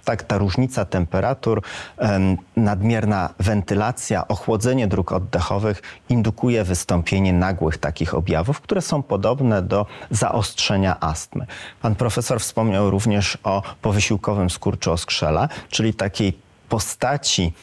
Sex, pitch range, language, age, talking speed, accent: male, 90-115 Hz, Polish, 40-59, 105 wpm, native